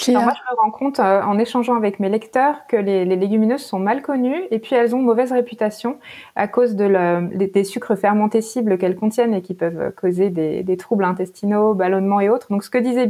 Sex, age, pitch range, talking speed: female, 20-39, 195-245 Hz, 230 wpm